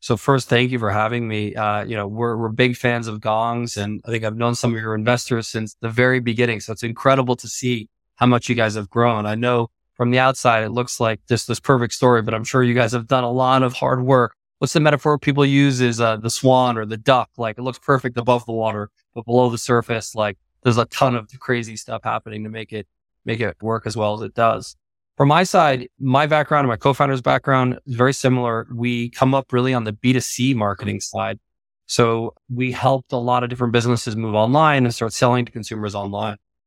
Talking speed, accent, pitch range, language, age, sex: 235 wpm, American, 115-130 Hz, English, 20-39, male